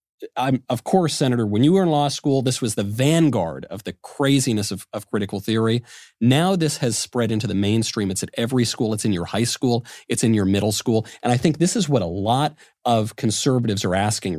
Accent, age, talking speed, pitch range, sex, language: American, 40-59, 225 wpm, 110-145 Hz, male, English